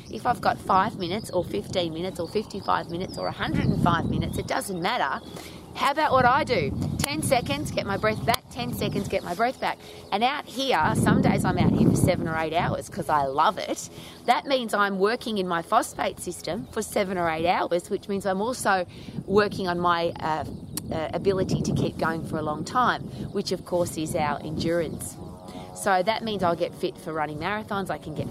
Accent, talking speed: Australian, 210 wpm